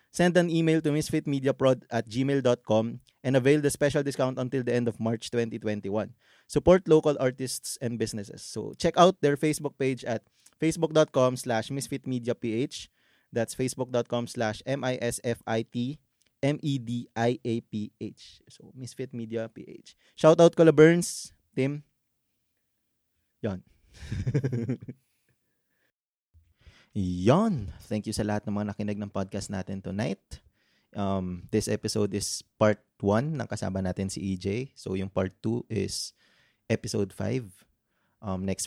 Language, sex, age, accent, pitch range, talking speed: Filipino, male, 20-39, native, 100-130 Hz, 120 wpm